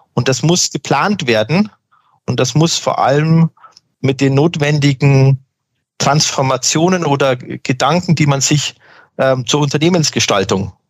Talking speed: 120 wpm